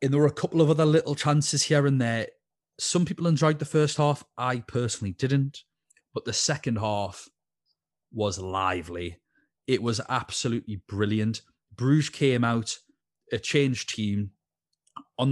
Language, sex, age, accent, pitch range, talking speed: English, male, 30-49, British, 110-140 Hz, 150 wpm